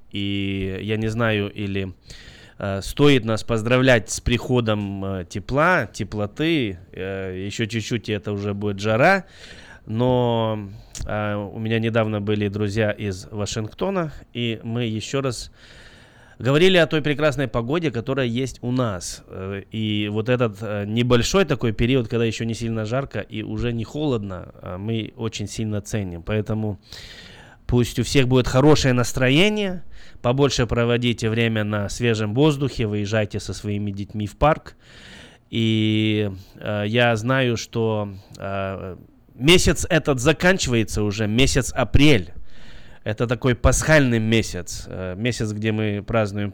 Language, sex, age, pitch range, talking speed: Russian, male, 20-39, 105-125 Hz, 130 wpm